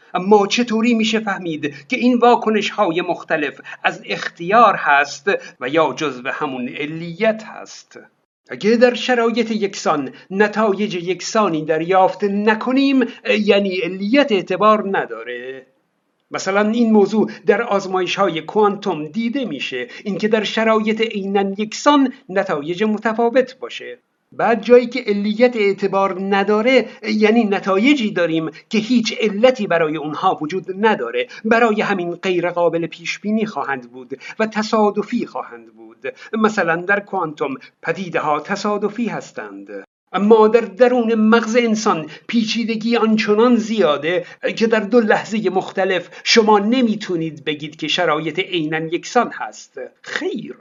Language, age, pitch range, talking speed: Persian, 50-69, 180-230 Hz, 120 wpm